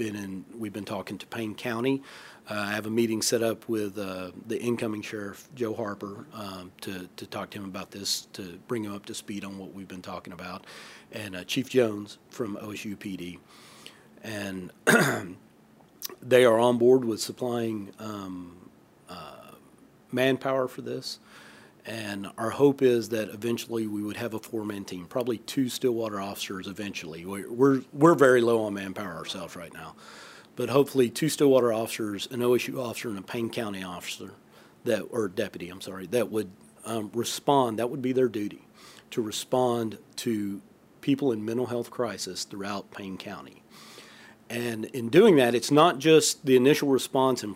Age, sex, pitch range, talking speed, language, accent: 40-59, male, 100-125 Hz, 170 wpm, English, American